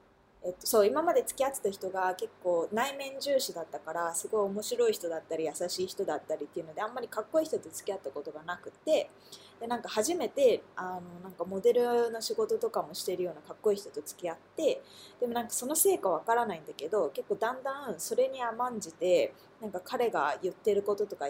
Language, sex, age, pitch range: Japanese, female, 20-39, 180-275 Hz